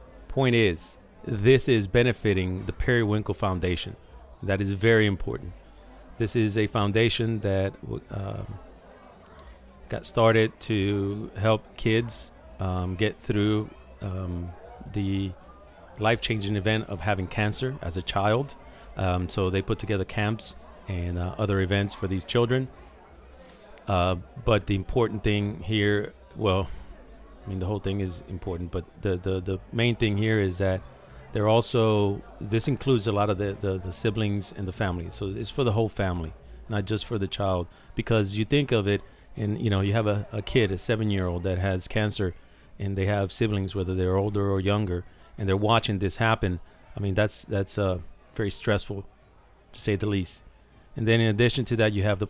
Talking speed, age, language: 170 wpm, 40-59, English